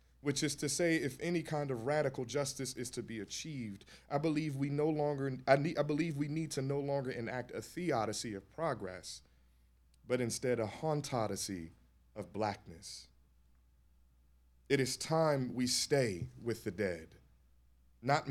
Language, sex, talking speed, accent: English, male, 140 wpm, American